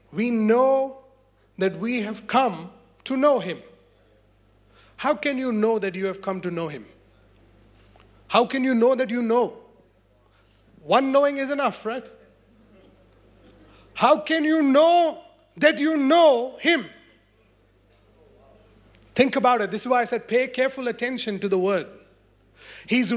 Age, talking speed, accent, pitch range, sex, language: 30-49, 140 wpm, Indian, 175-265 Hz, male, English